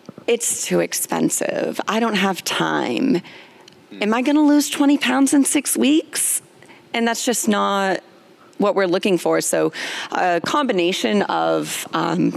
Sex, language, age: female, English, 30-49